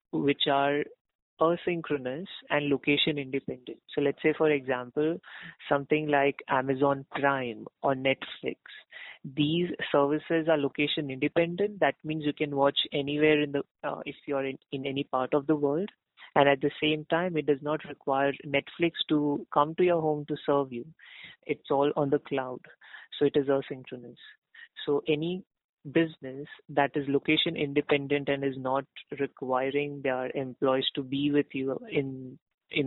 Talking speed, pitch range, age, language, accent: 160 wpm, 135-150 Hz, 30-49, Hindi, native